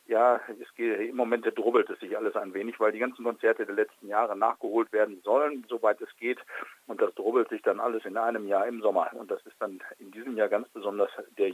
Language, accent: German, German